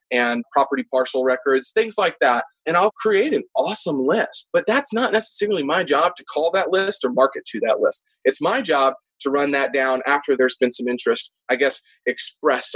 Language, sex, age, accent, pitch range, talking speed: English, male, 30-49, American, 130-210 Hz, 200 wpm